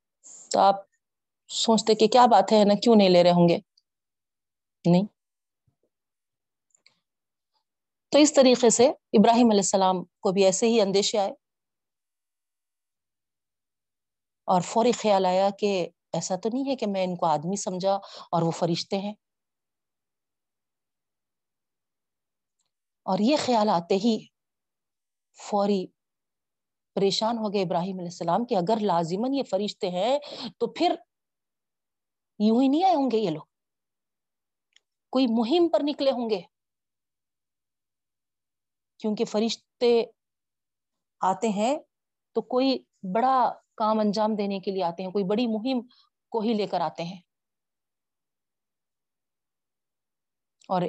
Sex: female